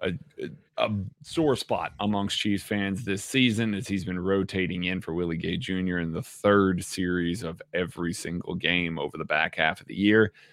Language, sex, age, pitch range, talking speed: English, male, 30-49, 90-115 Hz, 190 wpm